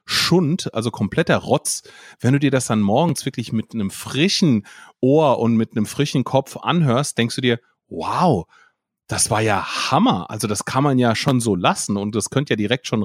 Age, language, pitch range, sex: 30-49, German, 120-155 Hz, male